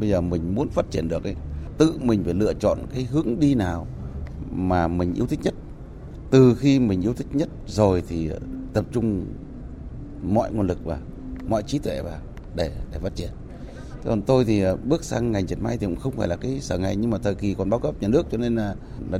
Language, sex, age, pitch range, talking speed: Vietnamese, male, 20-39, 85-125 Hz, 230 wpm